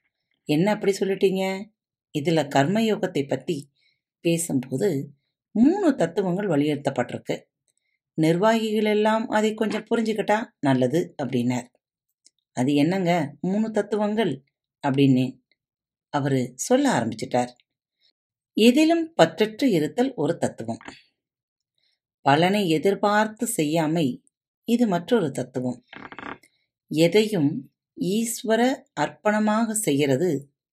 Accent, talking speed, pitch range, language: native, 80 wpm, 140-215 Hz, Tamil